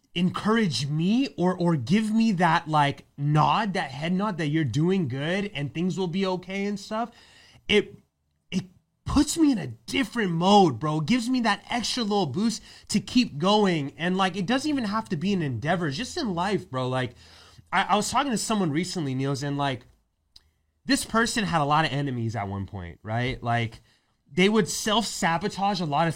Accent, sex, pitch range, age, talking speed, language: American, male, 140-205 Hz, 30-49, 195 wpm, English